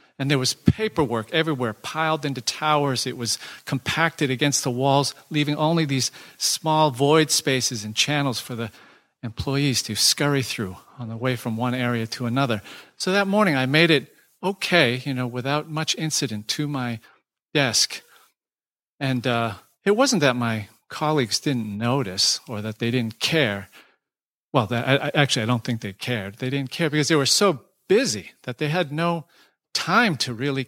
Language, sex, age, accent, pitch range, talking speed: English, male, 40-59, American, 125-155 Hz, 170 wpm